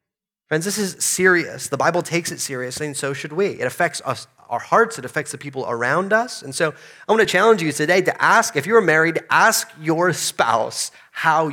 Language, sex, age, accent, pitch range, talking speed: English, male, 30-49, American, 135-175 Hz, 215 wpm